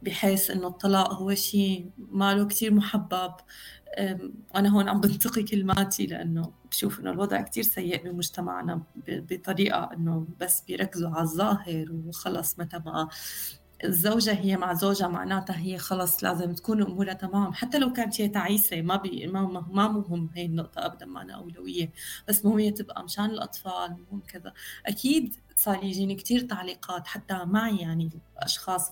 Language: Arabic